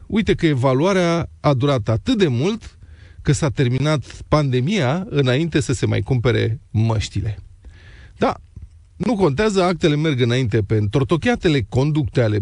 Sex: male